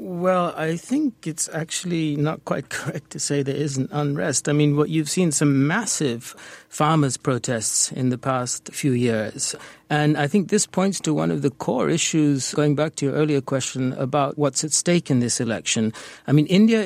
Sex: male